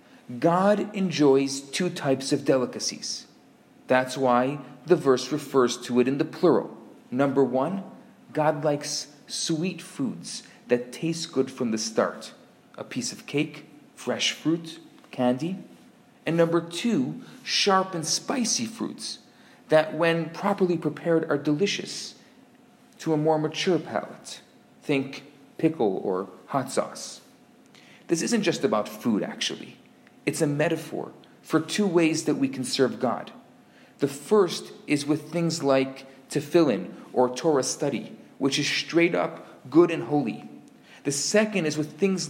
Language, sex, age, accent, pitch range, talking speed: English, male, 40-59, Canadian, 140-185 Hz, 140 wpm